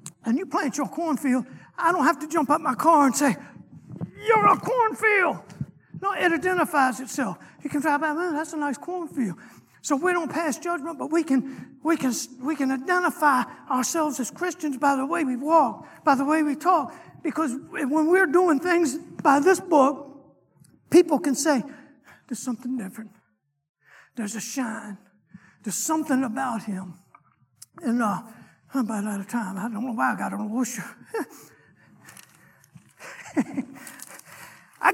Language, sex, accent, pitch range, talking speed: English, male, American, 245-315 Hz, 160 wpm